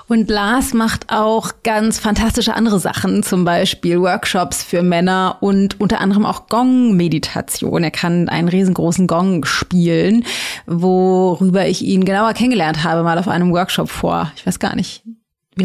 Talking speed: 155 wpm